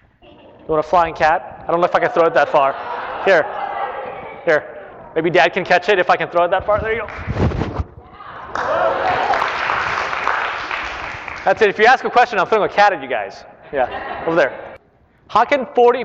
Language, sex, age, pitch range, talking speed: English, male, 30-49, 145-215 Hz, 195 wpm